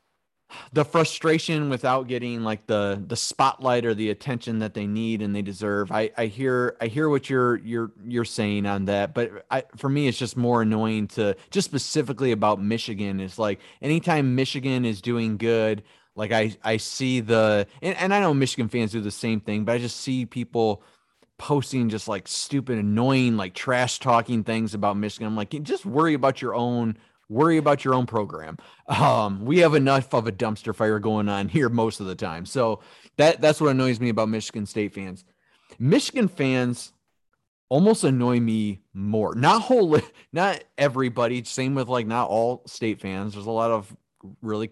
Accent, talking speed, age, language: American, 185 wpm, 30-49, English